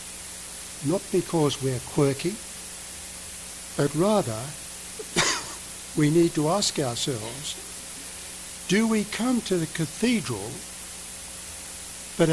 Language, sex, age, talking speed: English, male, 60-79, 90 wpm